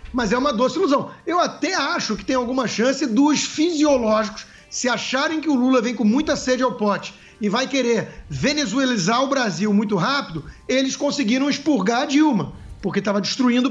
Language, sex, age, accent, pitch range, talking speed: English, male, 50-69, Brazilian, 220-290 Hz, 180 wpm